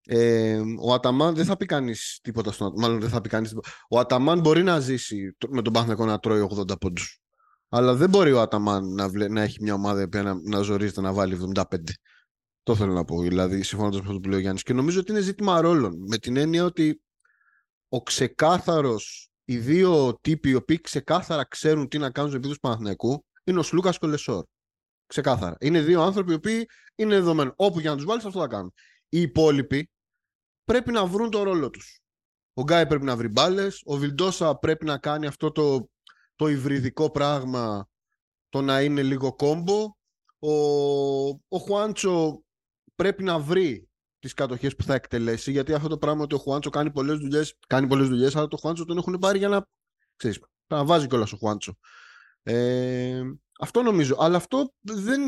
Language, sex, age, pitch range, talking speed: Greek, male, 30-49, 115-165 Hz, 190 wpm